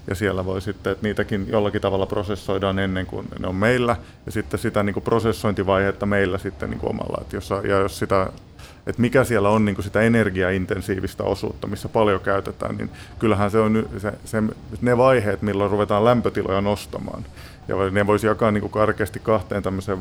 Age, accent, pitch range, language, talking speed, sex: 30-49, native, 100-110 Hz, Finnish, 155 wpm, male